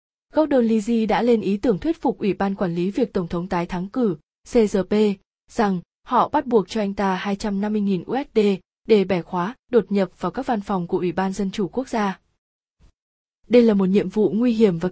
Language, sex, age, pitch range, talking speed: Vietnamese, female, 20-39, 190-230 Hz, 210 wpm